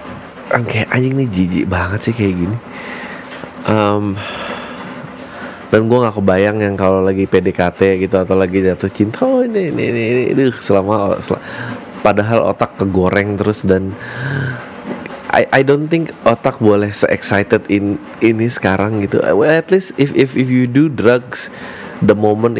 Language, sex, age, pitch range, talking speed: Indonesian, male, 20-39, 100-120 Hz, 150 wpm